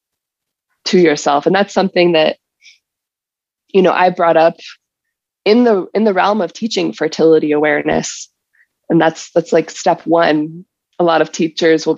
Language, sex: English, female